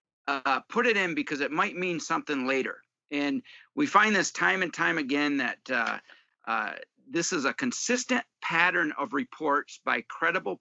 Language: English